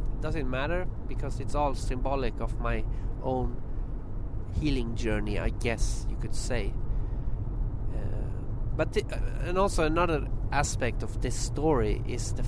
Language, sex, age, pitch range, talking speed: English, male, 30-49, 110-125 Hz, 130 wpm